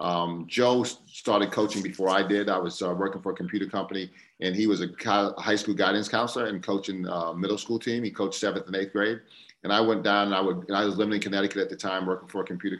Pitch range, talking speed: 90-105 Hz, 265 wpm